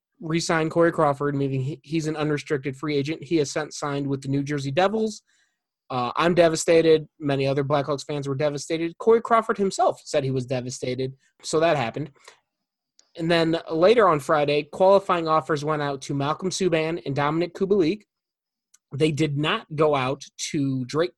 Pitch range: 140-170 Hz